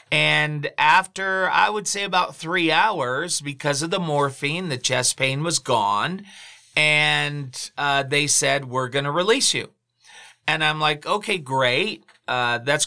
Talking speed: 155 wpm